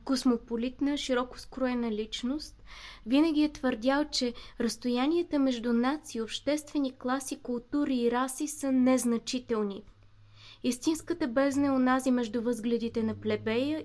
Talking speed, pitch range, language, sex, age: 115 wpm, 240-295 Hz, Bulgarian, female, 20-39